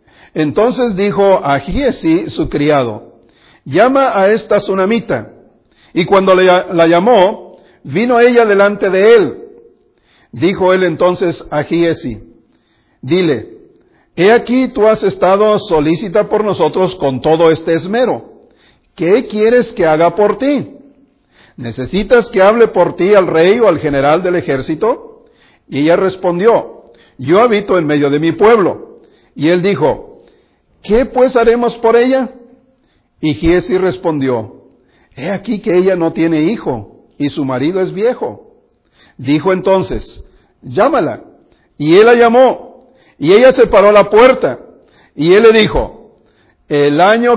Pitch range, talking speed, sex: 165-240 Hz, 135 wpm, male